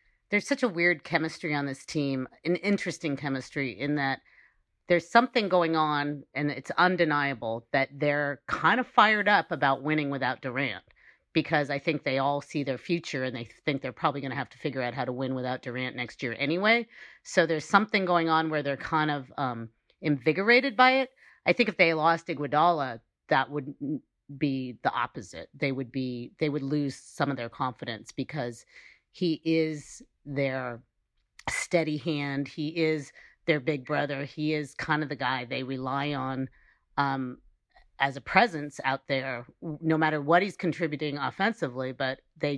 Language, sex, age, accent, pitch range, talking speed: English, female, 40-59, American, 135-165 Hz, 175 wpm